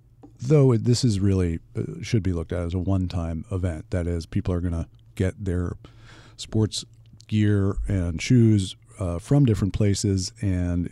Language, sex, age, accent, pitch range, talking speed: English, male, 50-69, American, 90-115 Hz, 165 wpm